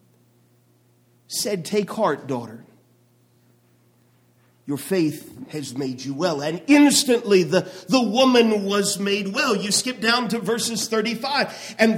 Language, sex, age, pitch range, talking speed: English, male, 50-69, 185-285 Hz, 125 wpm